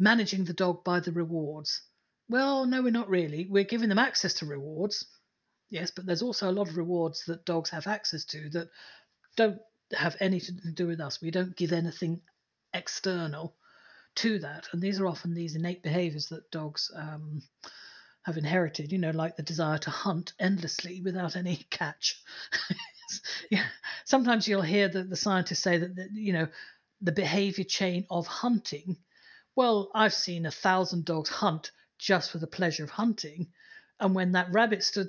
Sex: female